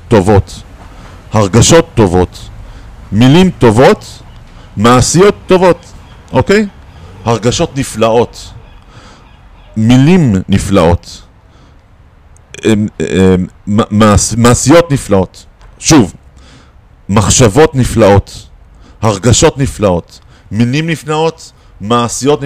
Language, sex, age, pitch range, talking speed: Hebrew, male, 50-69, 95-135 Hz, 70 wpm